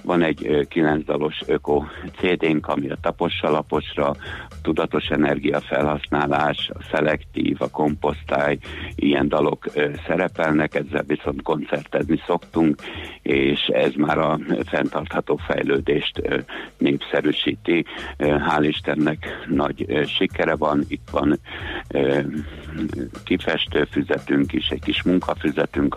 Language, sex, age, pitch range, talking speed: Hungarian, male, 60-79, 75-80 Hz, 100 wpm